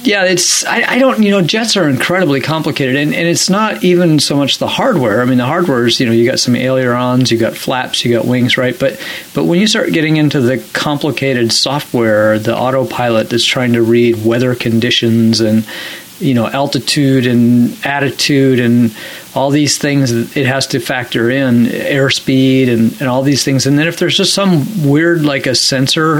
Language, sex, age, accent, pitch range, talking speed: English, male, 40-59, American, 120-150 Hz, 200 wpm